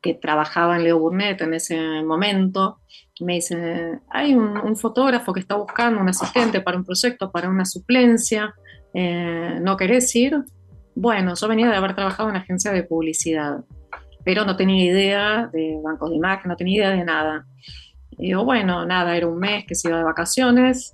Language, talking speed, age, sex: Spanish, 185 wpm, 30-49, female